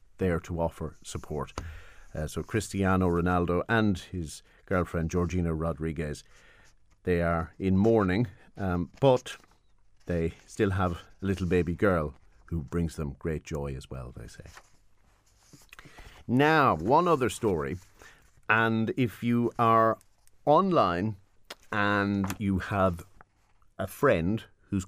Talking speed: 120 wpm